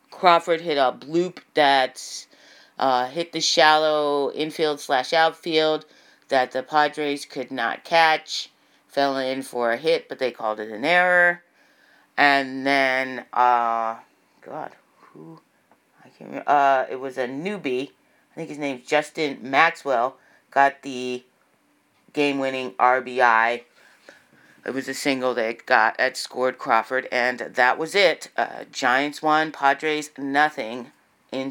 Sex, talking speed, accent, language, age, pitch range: female, 135 wpm, American, English, 40-59, 130-155 Hz